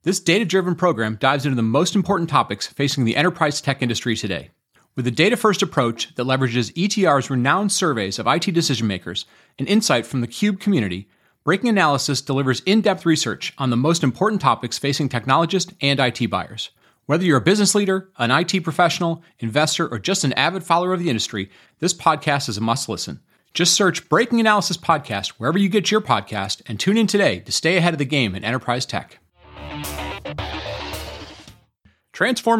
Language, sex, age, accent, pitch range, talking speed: English, male, 30-49, American, 120-185 Hz, 175 wpm